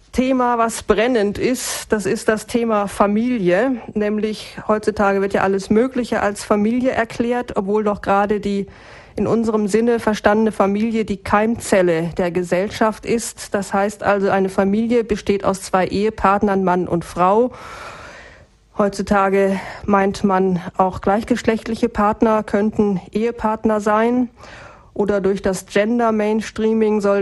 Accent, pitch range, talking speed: German, 195-230 Hz, 130 wpm